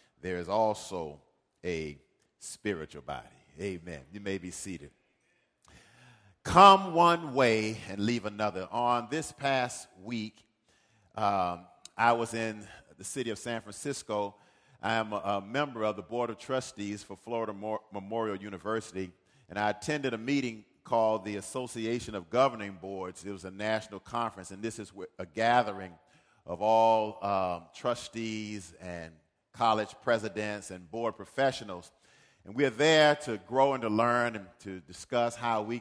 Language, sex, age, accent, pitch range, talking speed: English, male, 40-59, American, 100-120 Hz, 150 wpm